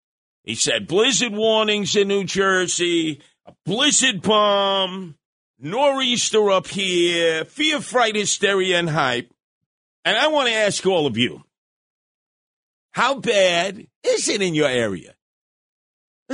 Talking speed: 125 wpm